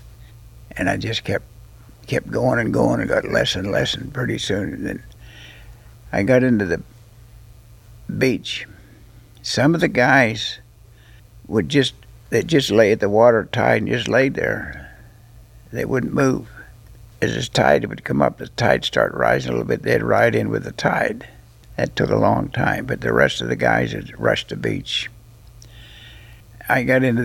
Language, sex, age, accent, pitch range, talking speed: English, male, 60-79, American, 110-120 Hz, 175 wpm